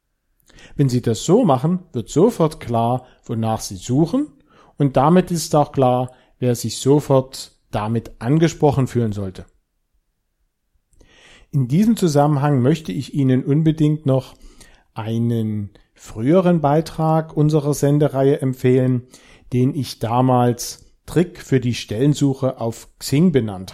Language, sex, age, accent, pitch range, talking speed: German, male, 40-59, German, 115-145 Hz, 120 wpm